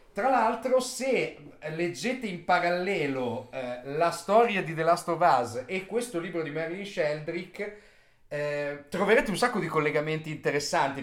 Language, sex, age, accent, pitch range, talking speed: Italian, male, 30-49, native, 140-190 Hz, 145 wpm